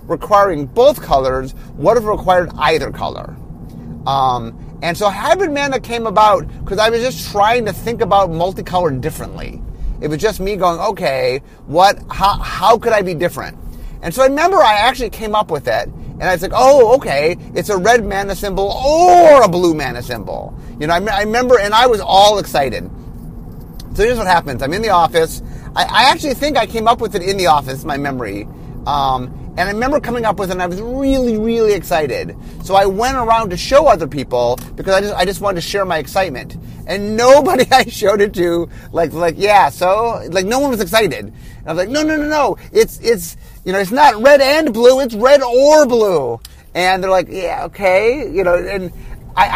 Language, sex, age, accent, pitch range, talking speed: English, male, 30-49, American, 180-250 Hz, 210 wpm